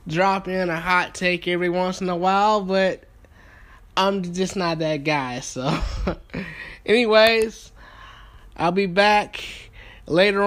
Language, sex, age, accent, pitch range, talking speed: English, male, 10-29, American, 170-210 Hz, 125 wpm